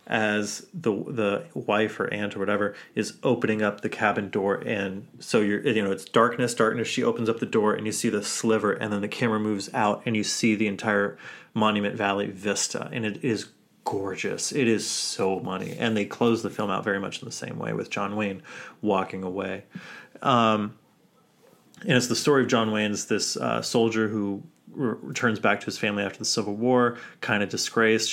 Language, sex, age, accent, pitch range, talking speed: English, male, 30-49, American, 100-125 Hz, 205 wpm